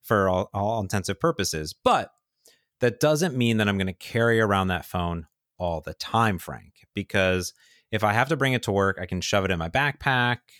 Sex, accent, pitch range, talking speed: male, American, 90-115 Hz, 210 wpm